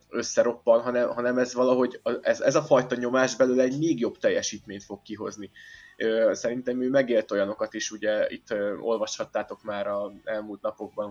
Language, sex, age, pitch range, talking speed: Hungarian, male, 20-39, 105-155 Hz, 155 wpm